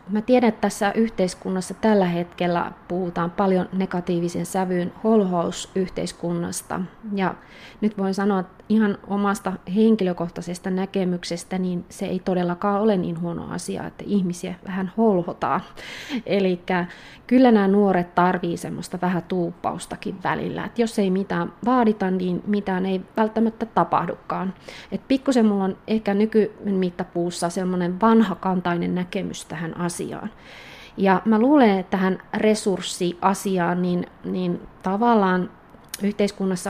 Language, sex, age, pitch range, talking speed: Finnish, female, 20-39, 180-205 Hz, 120 wpm